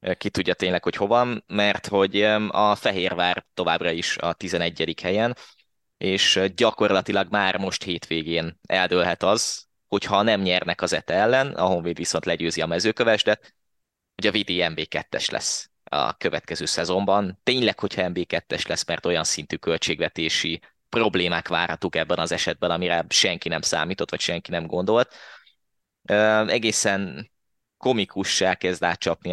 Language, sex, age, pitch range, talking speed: Hungarian, male, 20-39, 90-105 Hz, 135 wpm